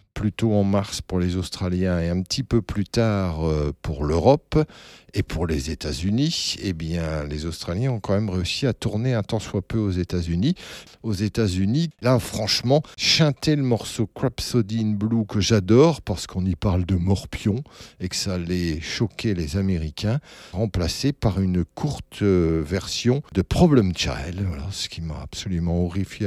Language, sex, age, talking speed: French, male, 60-79, 170 wpm